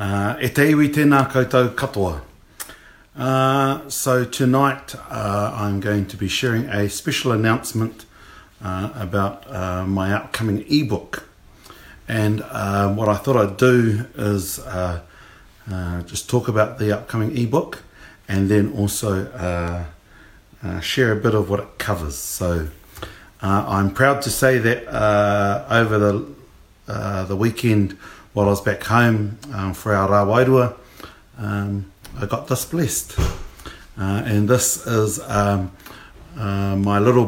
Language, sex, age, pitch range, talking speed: English, male, 50-69, 100-125 Hz, 140 wpm